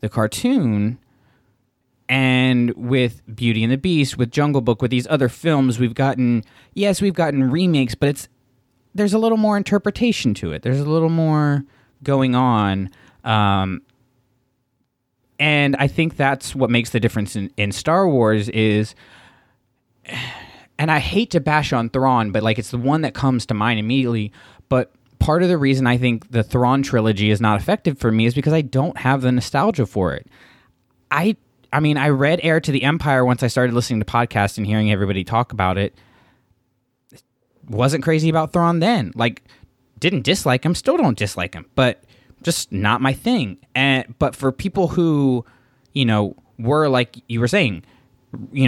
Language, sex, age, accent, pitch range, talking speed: English, male, 20-39, American, 115-145 Hz, 175 wpm